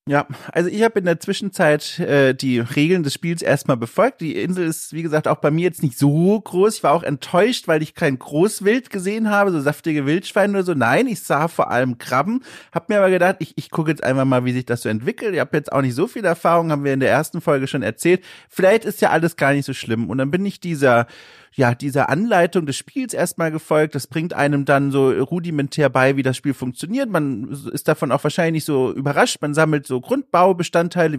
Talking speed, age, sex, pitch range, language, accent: 235 wpm, 30-49, male, 140-185 Hz, German, German